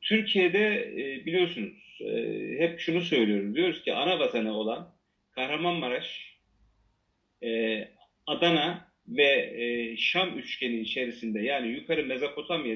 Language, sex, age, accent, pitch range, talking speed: Turkish, male, 40-59, native, 120-190 Hz, 90 wpm